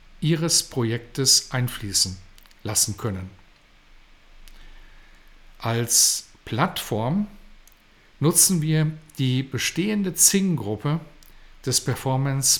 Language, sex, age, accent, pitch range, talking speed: German, male, 50-69, German, 115-160 Hz, 65 wpm